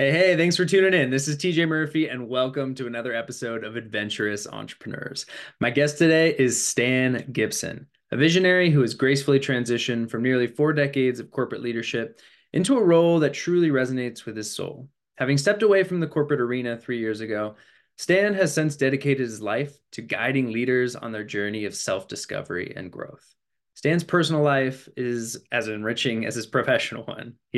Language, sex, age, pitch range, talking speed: English, male, 20-39, 115-150 Hz, 180 wpm